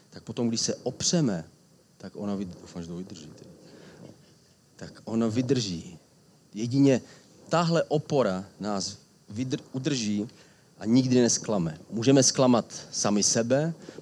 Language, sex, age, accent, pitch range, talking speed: Czech, male, 30-49, native, 115-140 Hz, 85 wpm